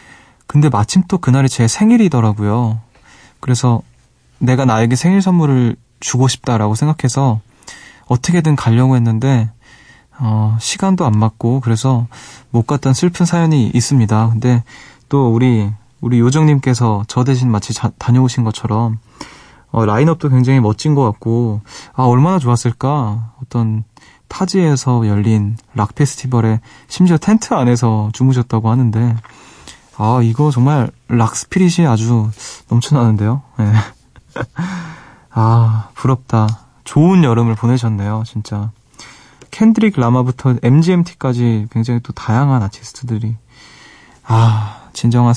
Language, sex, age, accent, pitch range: Korean, male, 20-39, native, 115-145 Hz